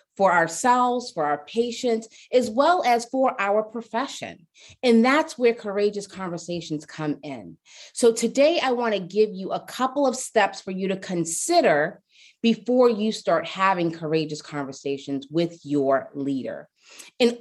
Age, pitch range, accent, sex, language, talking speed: 30-49, 185-240 Hz, American, female, English, 150 wpm